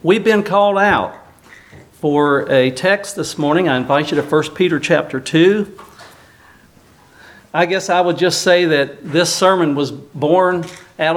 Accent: American